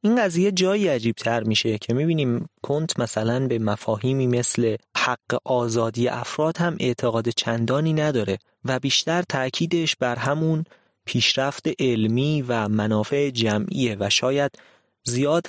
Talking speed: 135 wpm